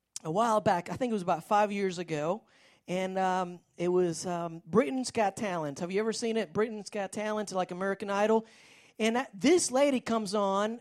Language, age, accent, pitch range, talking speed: English, 40-59, American, 215-265 Hz, 200 wpm